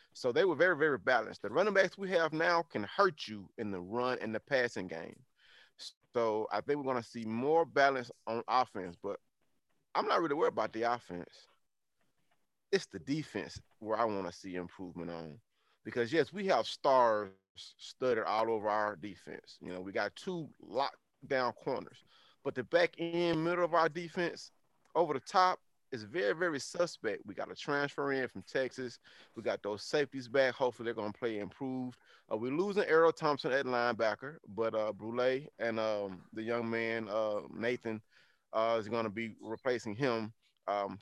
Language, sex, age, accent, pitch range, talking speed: English, male, 30-49, American, 110-150 Hz, 185 wpm